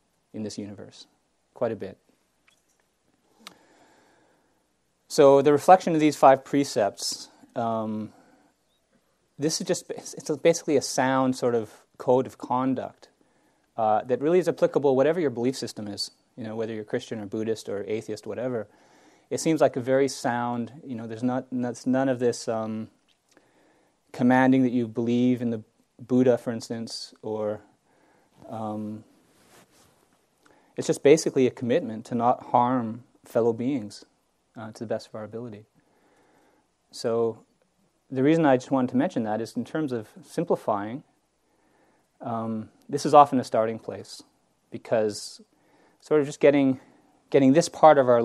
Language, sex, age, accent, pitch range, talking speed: English, male, 30-49, American, 115-145 Hz, 150 wpm